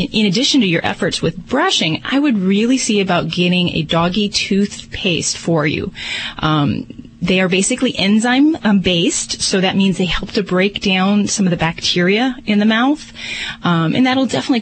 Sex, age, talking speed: female, 30-49, 170 wpm